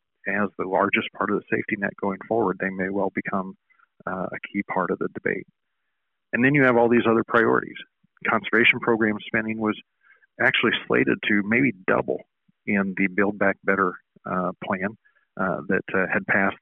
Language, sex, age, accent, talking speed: English, male, 40-59, American, 180 wpm